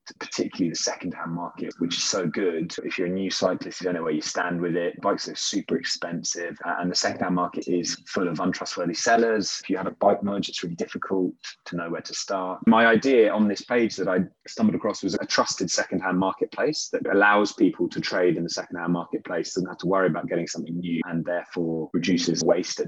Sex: male